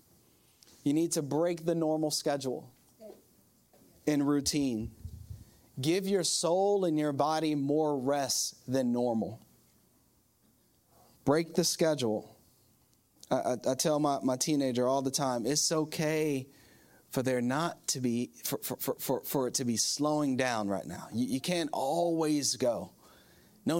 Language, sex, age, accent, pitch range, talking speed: English, male, 30-49, American, 130-175 Hz, 140 wpm